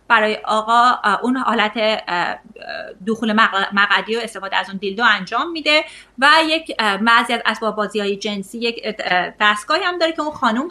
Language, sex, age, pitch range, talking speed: Persian, female, 30-49, 215-295 Hz, 150 wpm